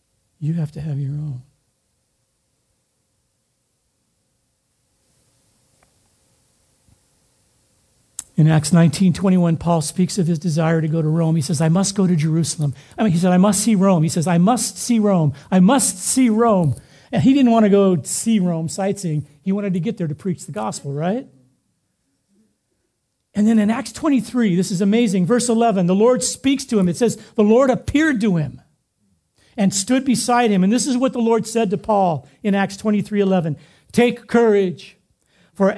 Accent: American